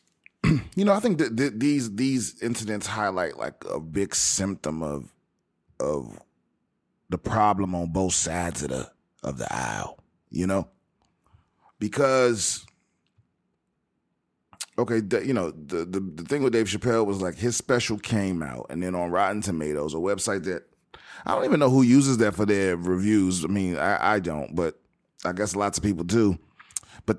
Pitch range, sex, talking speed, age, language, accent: 85-110 Hz, male, 170 wpm, 30-49, English, American